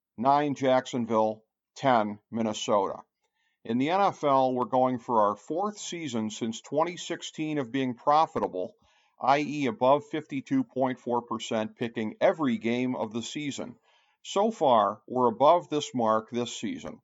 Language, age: English, 50-69